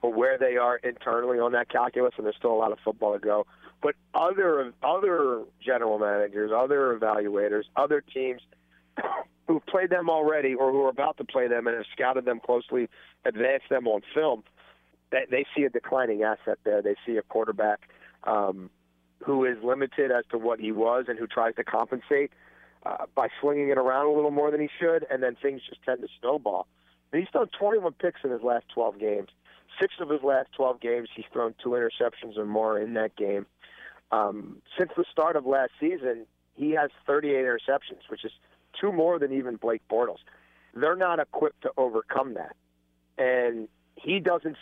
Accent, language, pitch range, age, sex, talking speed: American, English, 110-160 Hz, 40-59, male, 190 wpm